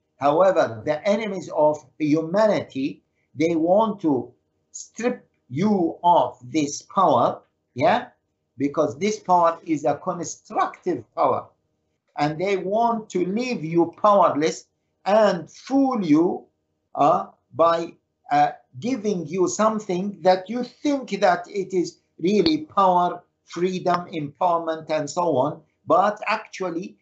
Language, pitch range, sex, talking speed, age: English, 150-210 Hz, male, 115 wpm, 60-79